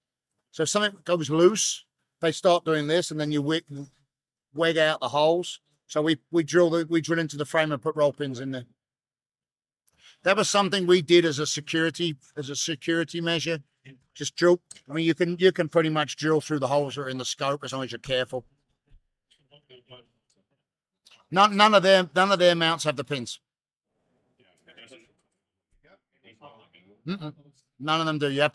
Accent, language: British, English